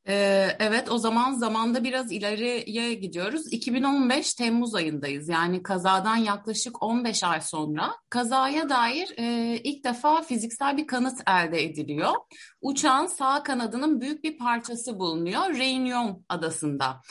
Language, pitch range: Turkish, 185-270 Hz